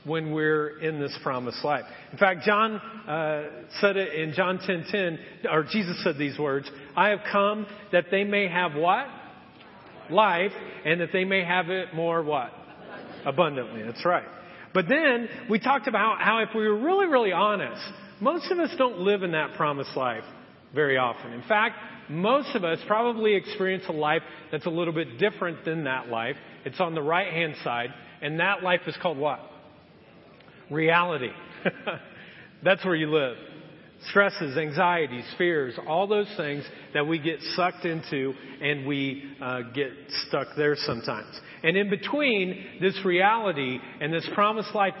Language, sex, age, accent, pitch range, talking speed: English, male, 40-59, American, 150-200 Hz, 165 wpm